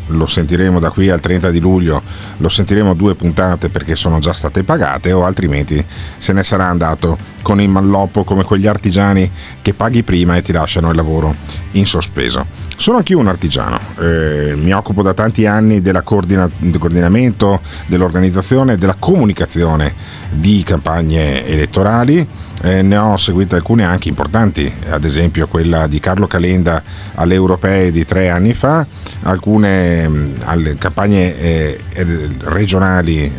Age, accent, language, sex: 50-69, native, Italian, male